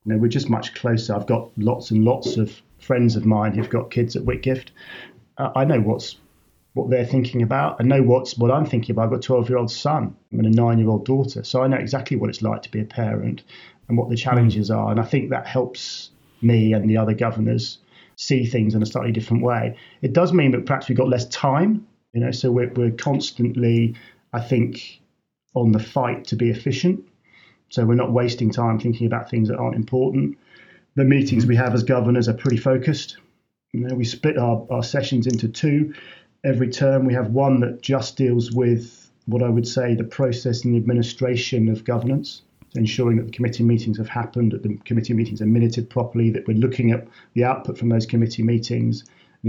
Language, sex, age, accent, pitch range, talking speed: English, male, 30-49, British, 115-130 Hz, 210 wpm